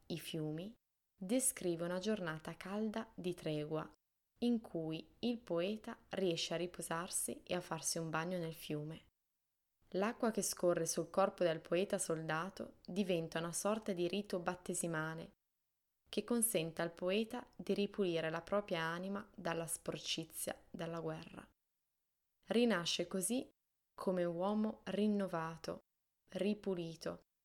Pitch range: 165-200 Hz